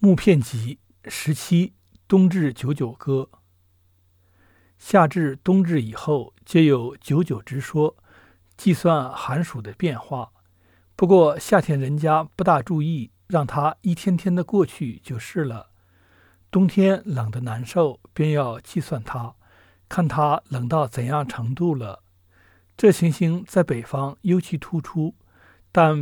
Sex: male